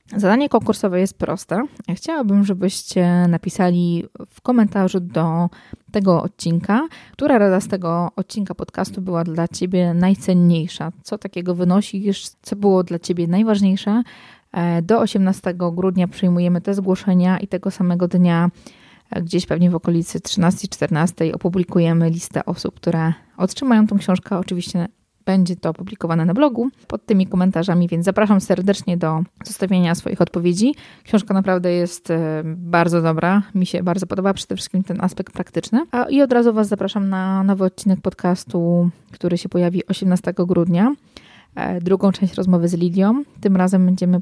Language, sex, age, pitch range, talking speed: Polish, female, 20-39, 175-200 Hz, 140 wpm